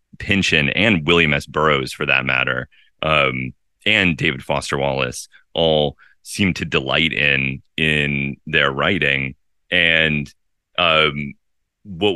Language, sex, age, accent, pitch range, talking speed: English, male, 30-49, American, 70-80 Hz, 120 wpm